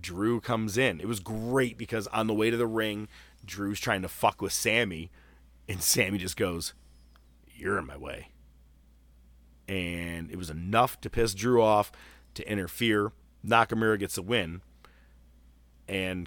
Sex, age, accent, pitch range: male, 30-49, American, 75-105 Hz